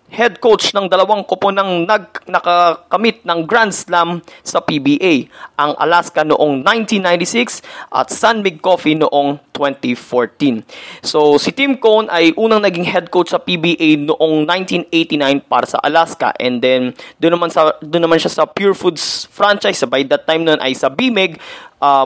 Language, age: Filipino, 20-39